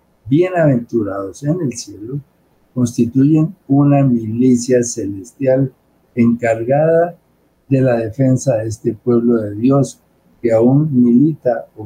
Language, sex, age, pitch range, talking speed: Spanish, male, 60-79, 110-140 Hz, 105 wpm